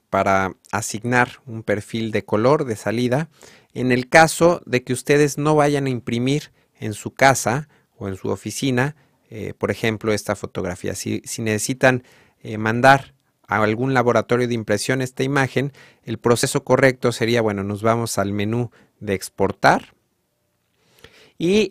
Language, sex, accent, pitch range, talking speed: Spanish, male, Mexican, 110-135 Hz, 150 wpm